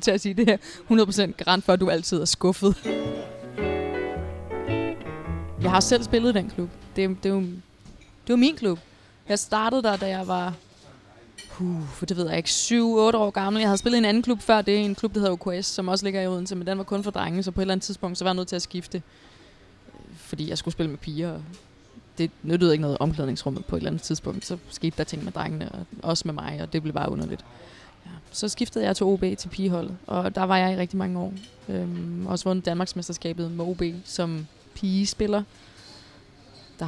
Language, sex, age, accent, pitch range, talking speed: Danish, female, 20-39, native, 155-195 Hz, 210 wpm